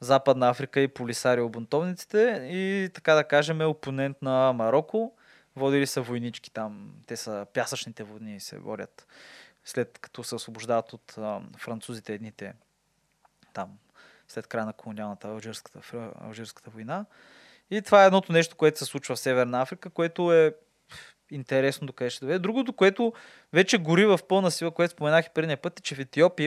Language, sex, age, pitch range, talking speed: Bulgarian, male, 20-39, 125-160 Hz, 170 wpm